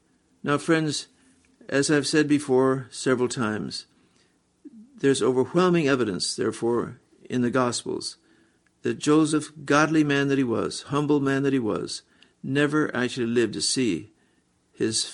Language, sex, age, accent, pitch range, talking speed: English, male, 60-79, American, 120-145 Hz, 130 wpm